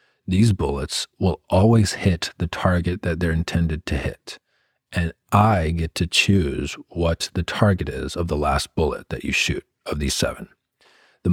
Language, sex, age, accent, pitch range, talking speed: English, male, 40-59, American, 80-95 Hz, 170 wpm